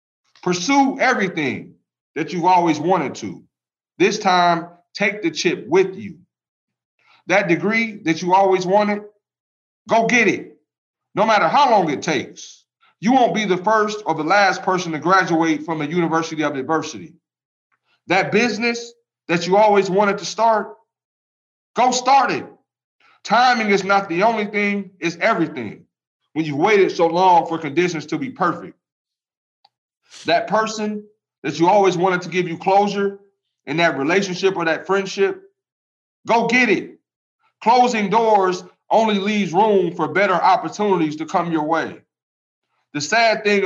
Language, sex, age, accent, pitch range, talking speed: English, male, 40-59, American, 170-215 Hz, 150 wpm